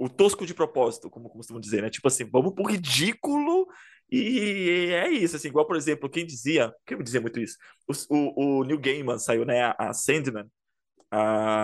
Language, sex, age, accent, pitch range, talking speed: Portuguese, male, 20-39, Brazilian, 135-185 Hz, 195 wpm